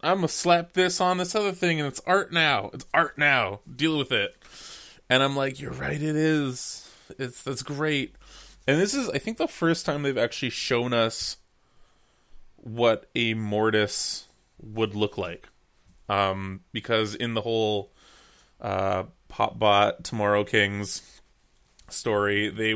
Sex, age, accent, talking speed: male, 20-39, American, 155 wpm